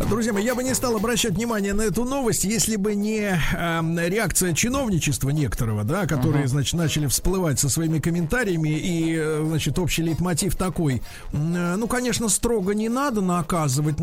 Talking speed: 160 wpm